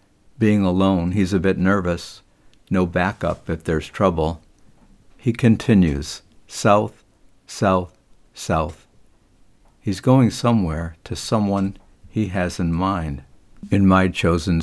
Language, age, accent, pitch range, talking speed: English, 60-79, American, 85-100 Hz, 115 wpm